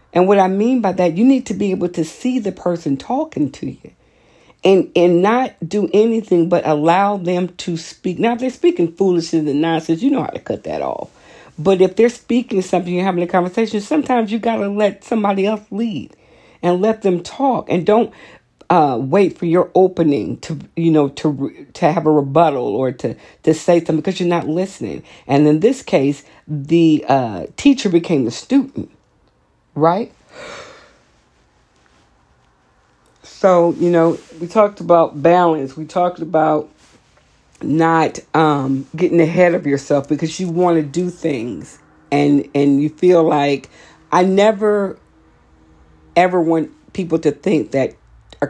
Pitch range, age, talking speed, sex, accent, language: 155-195 Hz, 50-69, 165 wpm, female, American, English